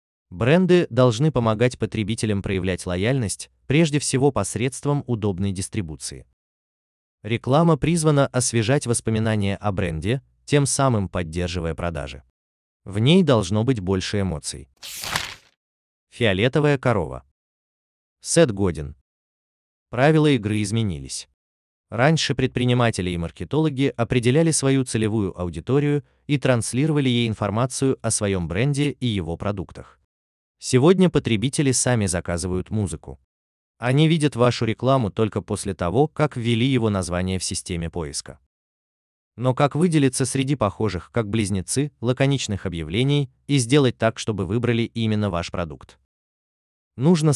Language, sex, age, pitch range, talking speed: Russian, male, 20-39, 85-130 Hz, 115 wpm